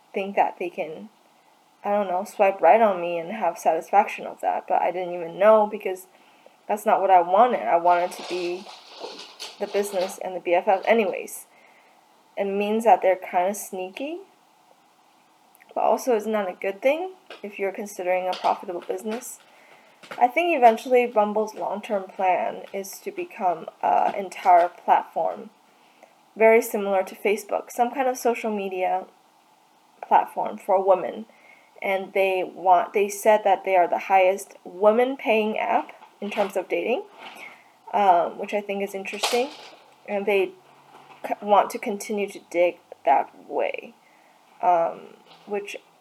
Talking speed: 150 wpm